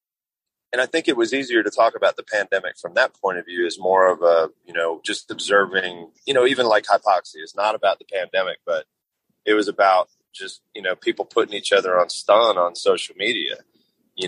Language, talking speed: English, 215 wpm